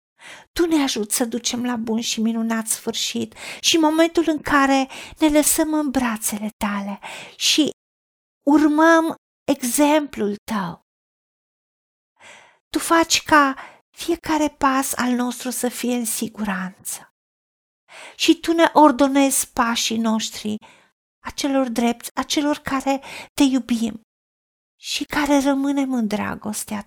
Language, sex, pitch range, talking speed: Romanian, female, 225-290 Hz, 115 wpm